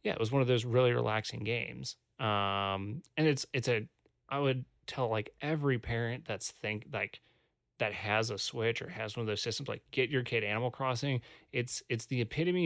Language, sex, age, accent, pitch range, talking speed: English, male, 30-49, American, 110-135 Hz, 205 wpm